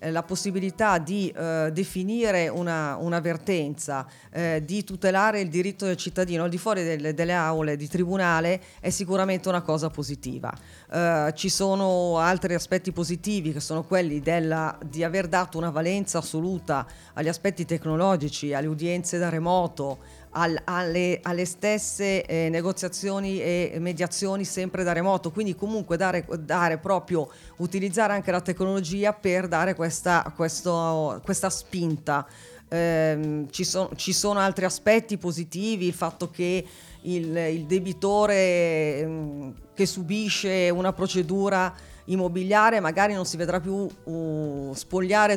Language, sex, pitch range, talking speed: Italian, female, 165-190 Hz, 130 wpm